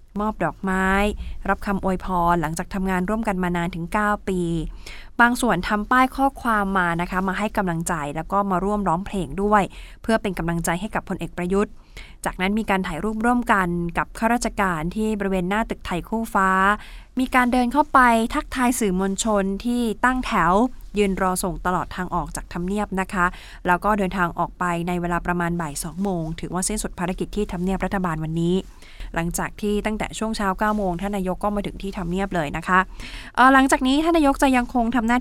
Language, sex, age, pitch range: Thai, female, 20-39, 180-225 Hz